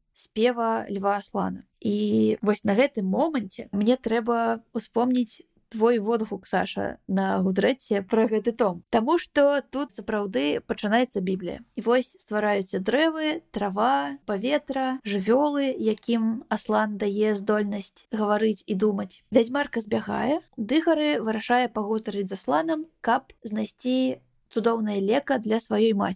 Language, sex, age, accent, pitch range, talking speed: Russian, female, 20-39, native, 210-250 Hz, 125 wpm